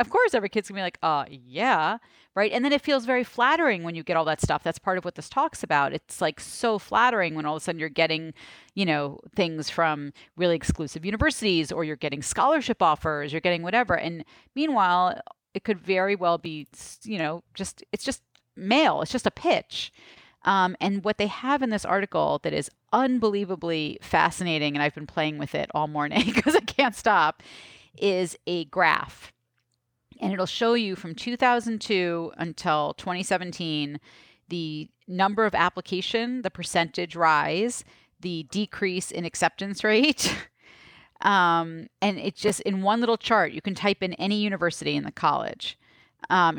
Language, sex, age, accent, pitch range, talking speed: English, female, 40-59, American, 160-215 Hz, 180 wpm